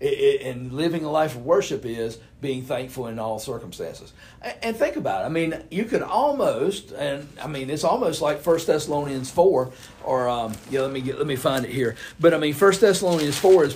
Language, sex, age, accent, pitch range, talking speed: English, male, 50-69, American, 135-180 Hz, 220 wpm